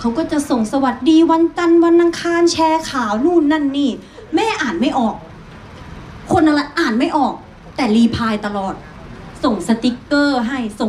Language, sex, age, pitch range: Thai, female, 30-49, 210-295 Hz